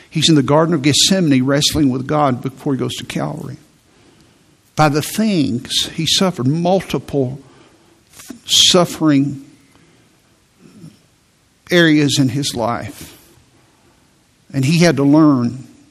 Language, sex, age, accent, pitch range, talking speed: English, male, 60-79, American, 130-155 Hz, 115 wpm